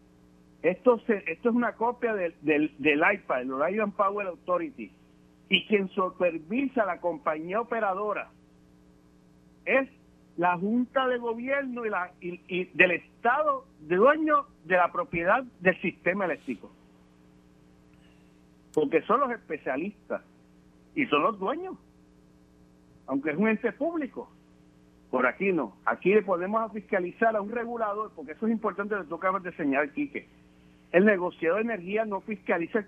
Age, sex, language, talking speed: 60-79, male, Spanish, 145 wpm